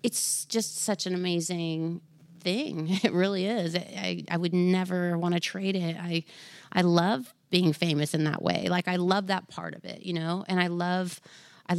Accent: American